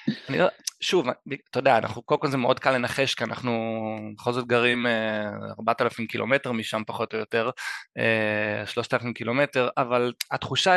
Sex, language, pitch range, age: male, Hebrew, 115-130 Hz, 20-39